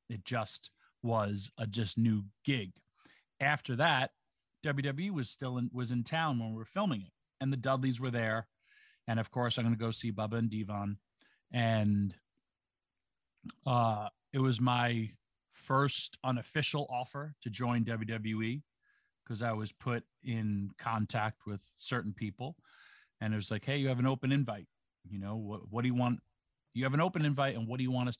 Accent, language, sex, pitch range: American, English, male, 105-130 Hz